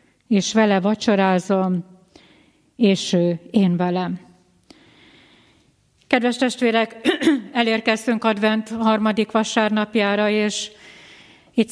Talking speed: 75 wpm